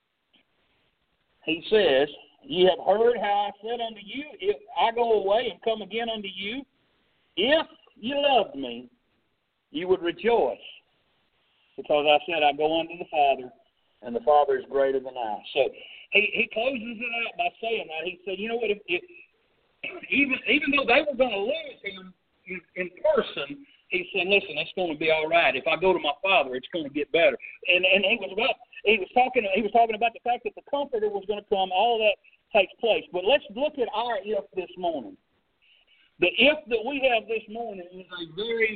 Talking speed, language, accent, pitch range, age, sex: 205 wpm, English, American, 180-270 Hz, 50-69, male